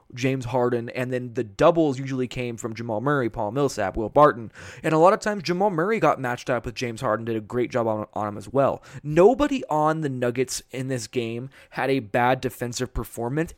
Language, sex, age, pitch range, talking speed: English, male, 20-39, 120-155 Hz, 215 wpm